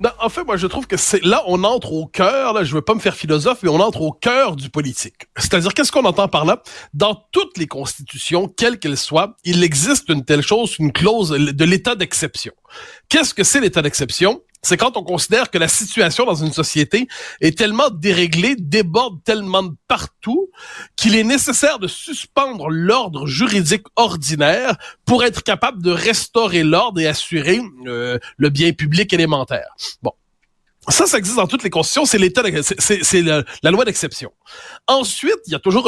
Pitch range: 165-235 Hz